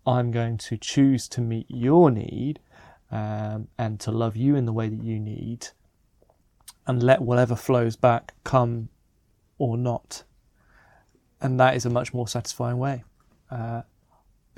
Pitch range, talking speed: 115-130 Hz, 150 wpm